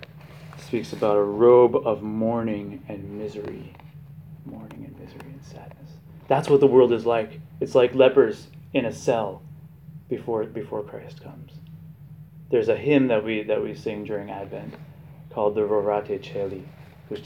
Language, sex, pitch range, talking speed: English, male, 125-155 Hz, 155 wpm